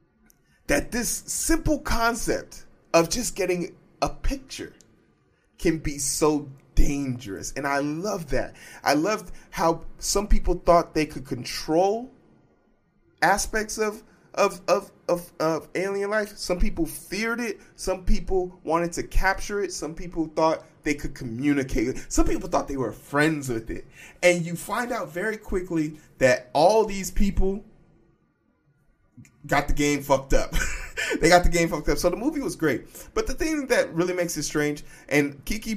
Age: 20-39